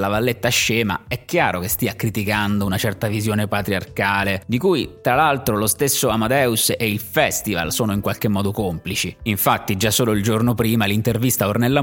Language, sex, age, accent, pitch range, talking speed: Italian, male, 30-49, native, 95-120 Hz, 185 wpm